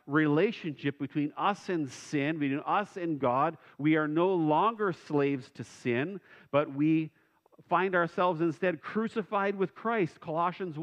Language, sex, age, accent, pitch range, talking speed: English, male, 50-69, American, 130-175 Hz, 140 wpm